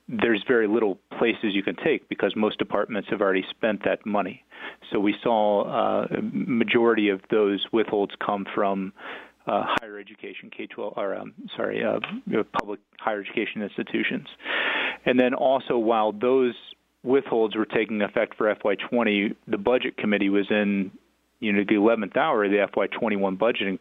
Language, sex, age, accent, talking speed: English, male, 40-59, American, 160 wpm